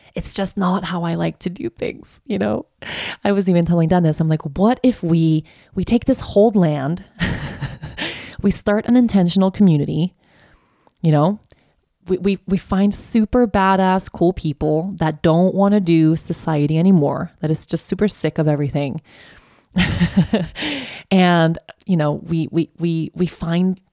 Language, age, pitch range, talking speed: English, 20-39, 165-210 Hz, 160 wpm